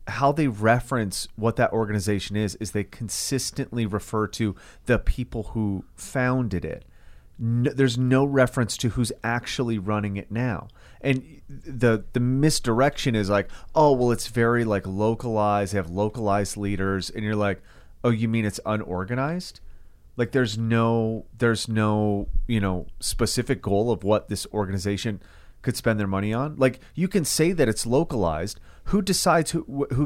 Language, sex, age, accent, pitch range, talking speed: English, male, 30-49, American, 105-135 Hz, 160 wpm